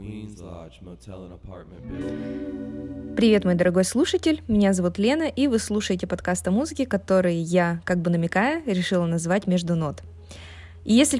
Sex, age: female, 20-39